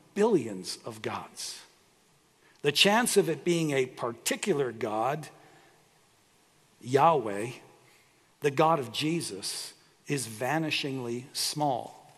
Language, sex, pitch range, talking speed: English, male, 130-175 Hz, 95 wpm